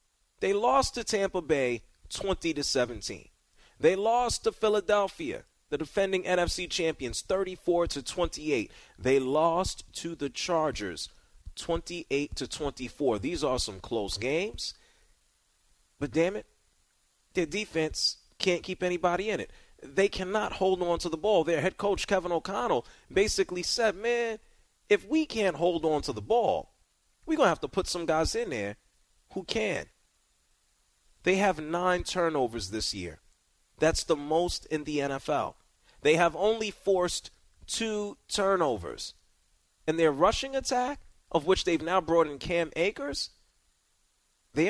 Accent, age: American, 30-49